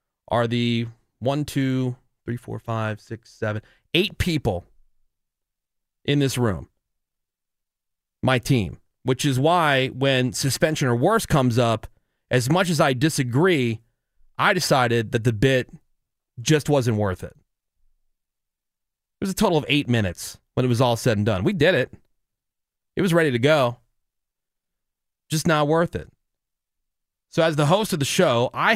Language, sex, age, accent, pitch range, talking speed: English, male, 30-49, American, 115-150 Hz, 150 wpm